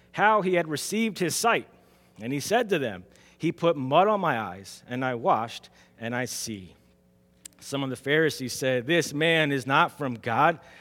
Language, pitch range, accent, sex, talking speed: English, 125-180 Hz, American, male, 190 wpm